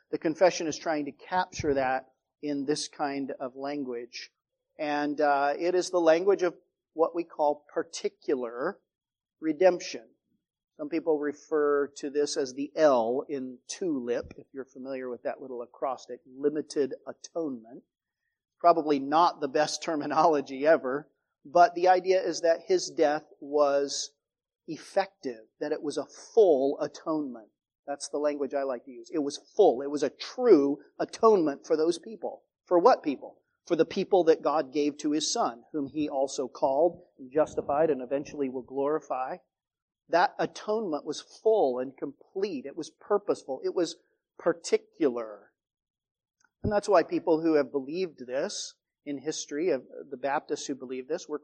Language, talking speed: English, 155 wpm